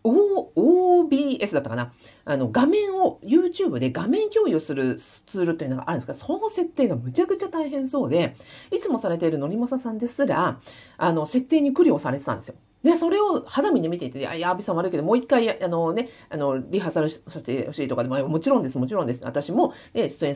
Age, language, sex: 40-59, Japanese, female